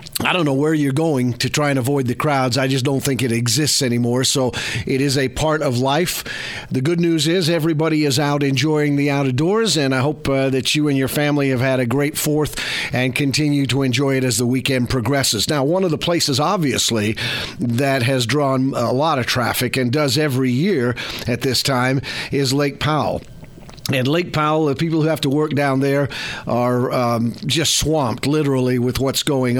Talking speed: 205 wpm